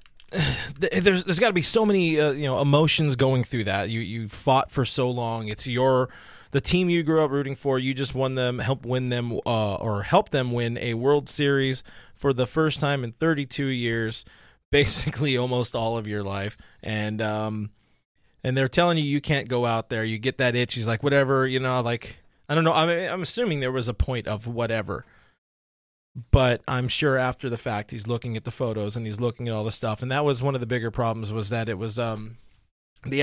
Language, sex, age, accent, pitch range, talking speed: English, male, 20-39, American, 115-145 Hz, 220 wpm